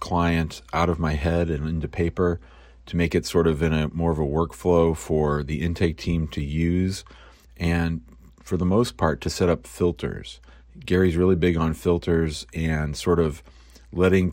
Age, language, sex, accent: 40-59, English, male, American